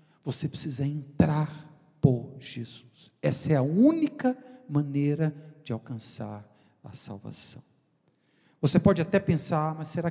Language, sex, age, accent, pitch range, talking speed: Portuguese, male, 50-69, Brazilian, 135-175 Hz, 120 wpm